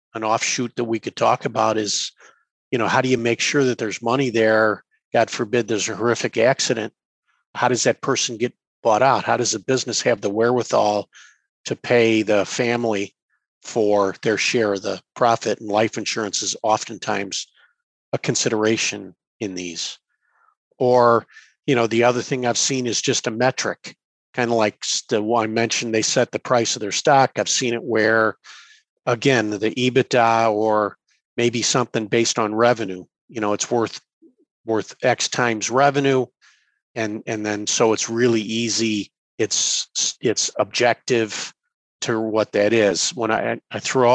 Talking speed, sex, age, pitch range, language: 165 wpm, male, 50-69, 110-130 Hz, English